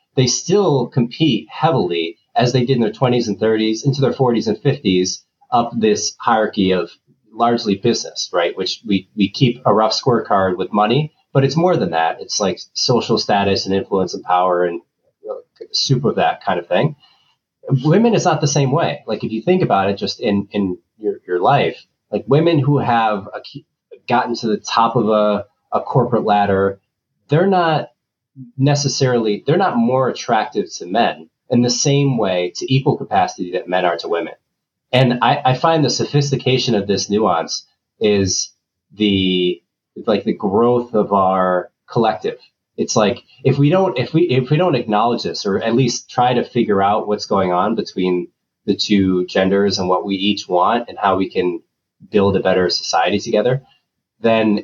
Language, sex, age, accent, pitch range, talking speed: English, male, 30-49, American, 100-135 Hz, 180 wpm